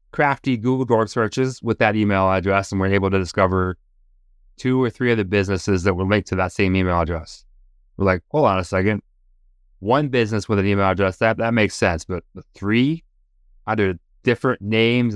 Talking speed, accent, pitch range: 190 wpm, American, 95-115 Hz